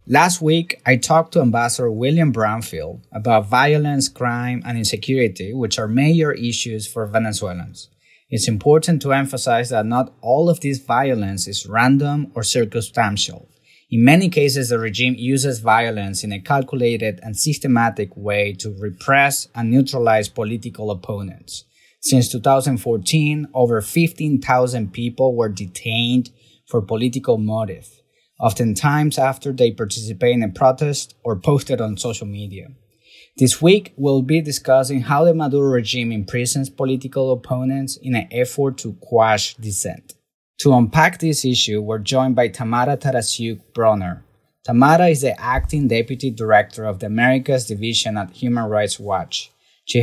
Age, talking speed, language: 30-49, 140 wpm, English